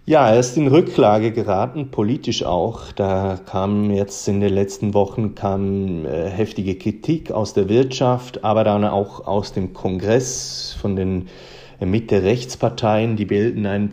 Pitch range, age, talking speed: 100-115 Hz, 30-49, 145 wpm